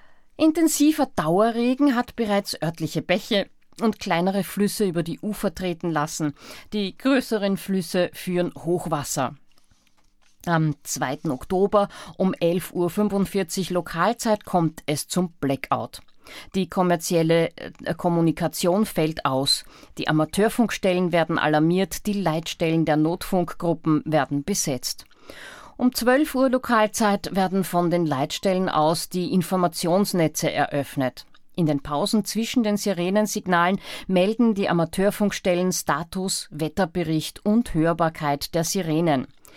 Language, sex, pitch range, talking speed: German, female, 155-200 Hz, 110 wpm